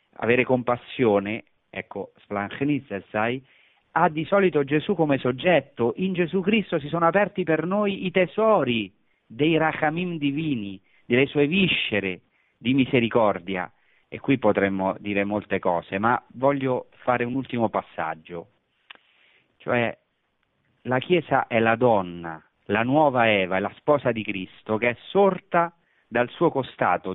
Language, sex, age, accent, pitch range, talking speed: Italian, male, 40-59, native, 110-160 Hz, 135 wpm